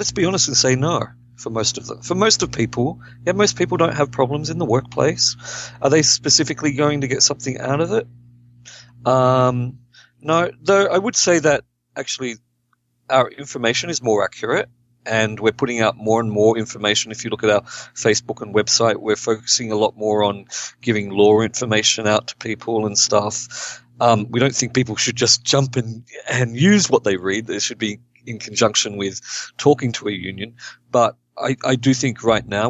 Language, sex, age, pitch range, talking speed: English, male, 40-59, 105-130 Hz, 195 wpm